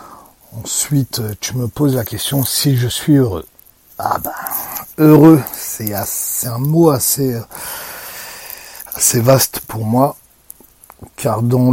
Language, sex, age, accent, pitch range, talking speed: French, male, 50-69, French, 105-130 Hz, 130 wpm